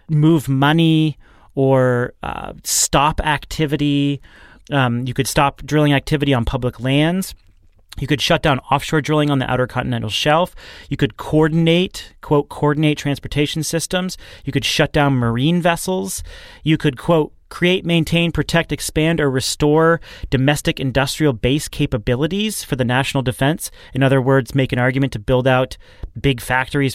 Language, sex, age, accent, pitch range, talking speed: English, male, 30-49, American, 125-155 Hz, 150 wpm